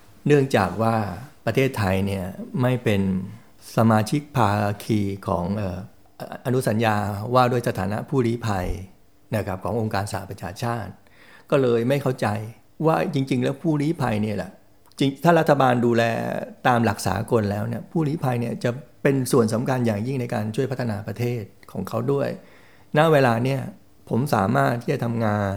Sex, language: male, Thai